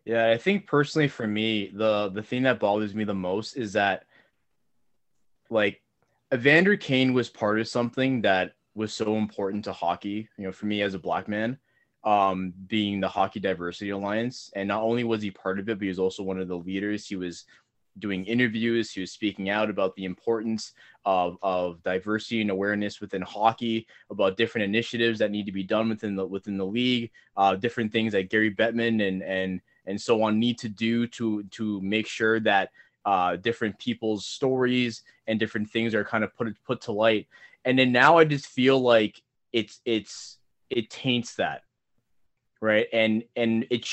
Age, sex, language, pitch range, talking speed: 20-39, male, English, 105-120 Hz, 190 wpm